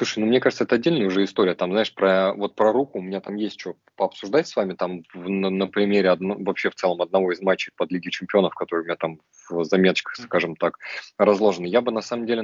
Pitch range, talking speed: 95-110 Hz, 230 wpm